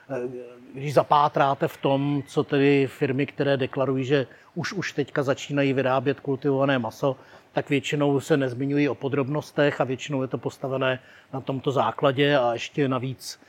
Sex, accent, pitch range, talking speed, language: male, native, 130-145 Hz, 150 wpm, Czech